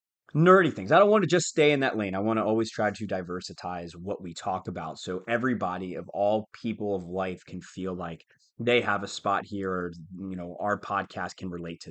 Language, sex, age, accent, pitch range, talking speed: English, male, 30-49, American, 100-160 Hz, 225 wpm